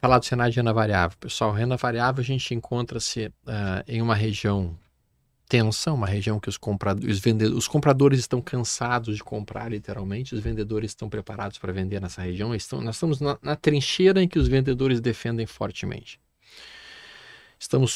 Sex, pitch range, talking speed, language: male, 110-130 Hz, 155 wpm, Portuguese